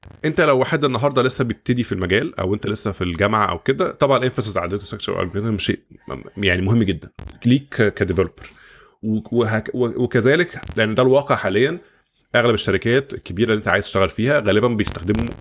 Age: 20-39